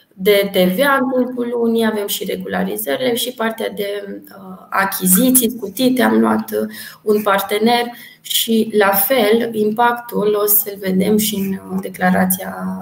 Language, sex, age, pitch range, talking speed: Romanian, female, 20-39, 180-220 Hz, 120 wpm